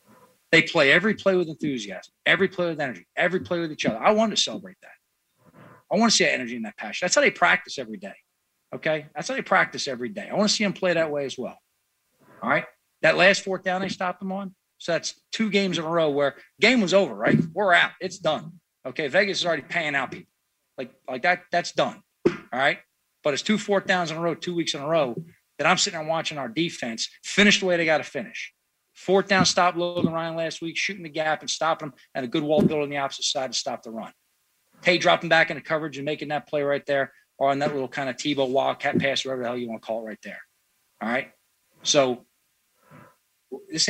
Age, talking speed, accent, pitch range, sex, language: 40-59, 245 wpm, American, 140-185 Hz, male, English